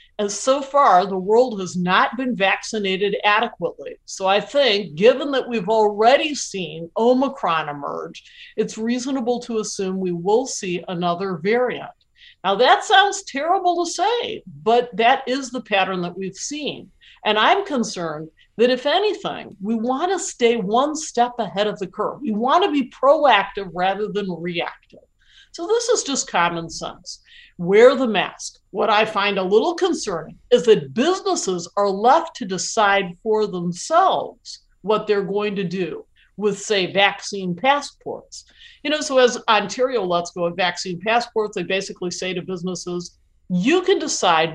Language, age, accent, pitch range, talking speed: English, 50-69, American, 190-290 Hz, 160 wpm